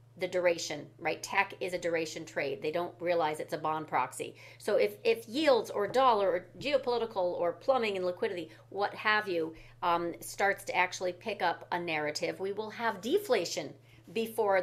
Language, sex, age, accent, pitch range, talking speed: English, female, 40-59, American, 160-220 Hz, 175 wpm